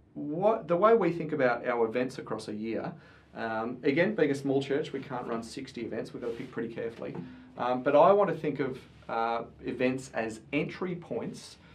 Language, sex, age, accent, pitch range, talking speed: English, male, 30-49, Australian, 115-145 Hz, 205 wpm